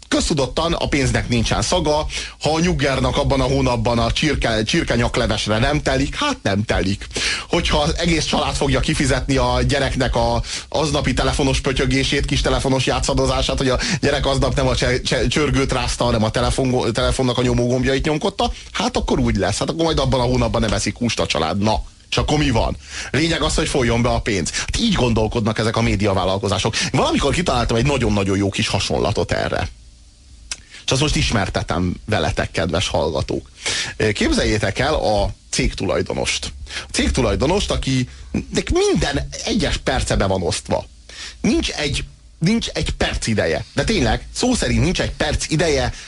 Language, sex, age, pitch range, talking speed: Hungarian, male, 30-49, 100-135 Hz, 165 wpm